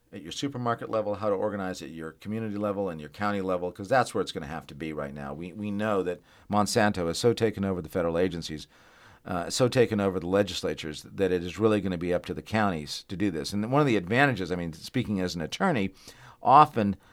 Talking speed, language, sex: 245 wpm, English, male